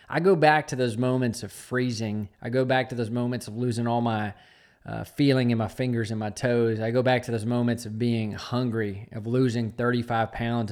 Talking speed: 220 wpm